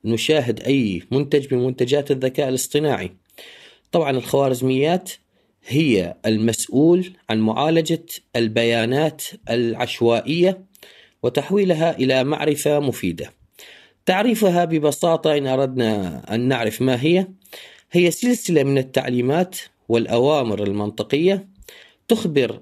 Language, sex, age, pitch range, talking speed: Arabic, male, 30-49, 120-165 Hz, 90 wpm